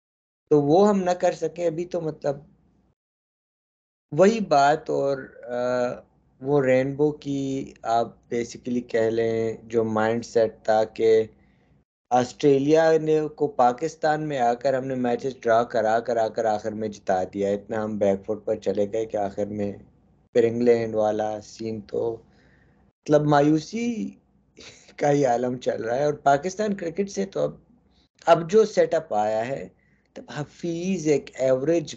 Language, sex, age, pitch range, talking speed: Urdu, male, 20-39, 110-155 Hz, 155 wpm